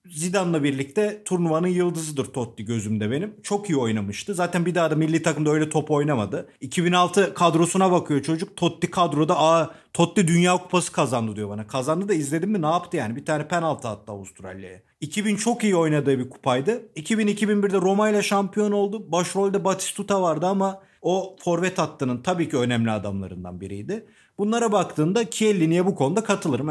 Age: 40-59